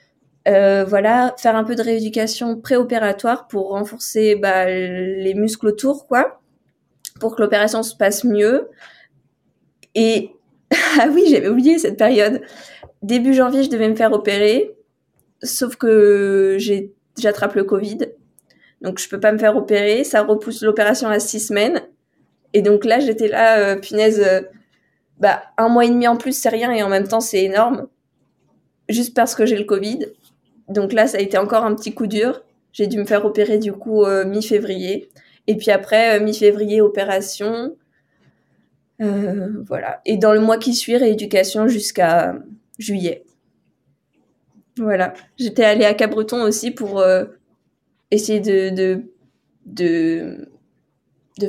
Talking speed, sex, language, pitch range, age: 155 wpm, female, French, 200-225 Hz, 20-39